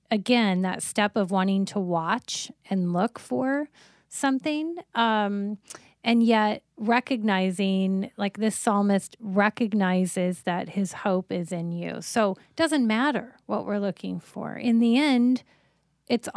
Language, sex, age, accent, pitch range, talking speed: English, female, 30-49, American, 195-245 Hz, 135 wpm